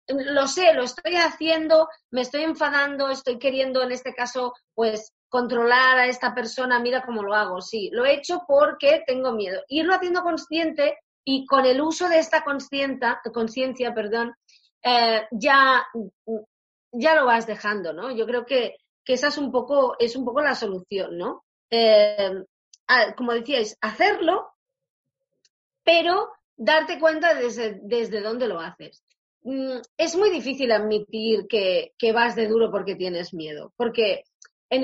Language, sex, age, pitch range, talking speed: Spanish, female, 30-49, 225-295 Hz, 150 wpm